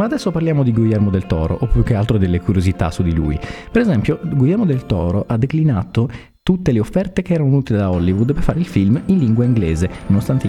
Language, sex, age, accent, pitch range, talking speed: Italian, male, 30-49, native, 95-140 Hz, 225 wpm